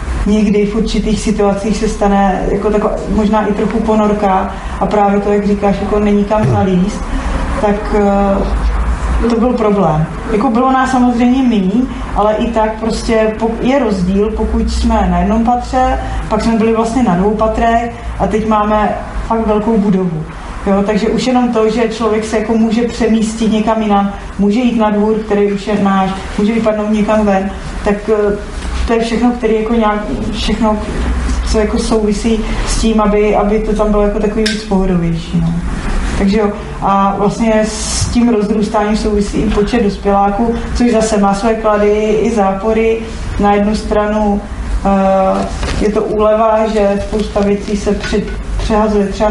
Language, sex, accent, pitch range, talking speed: Czech, female, native, 200-220 Hz, 160 wpm